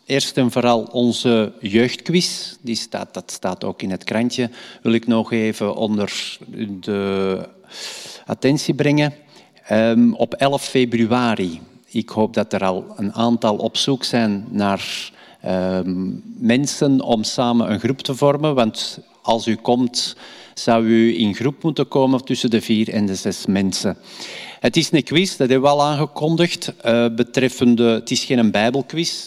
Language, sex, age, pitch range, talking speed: Dutch, male, 50-69, 110-130 Hz, 150 wpm